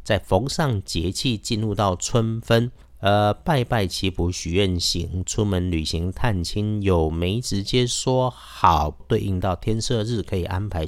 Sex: male